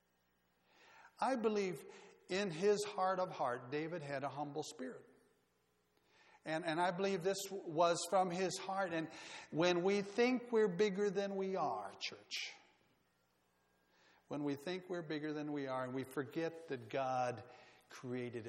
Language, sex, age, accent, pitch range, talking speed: English, male, 60-79, American, 120-160 Hz, 145 wpm